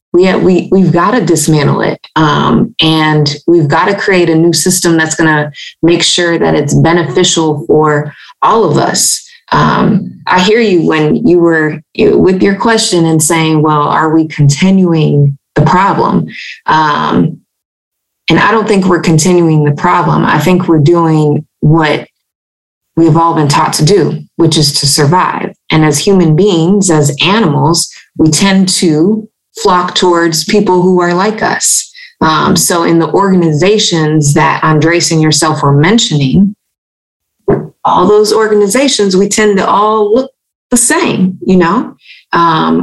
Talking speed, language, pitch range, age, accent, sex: 155 wpm, English, 160-205 Hz, 20-39, American, female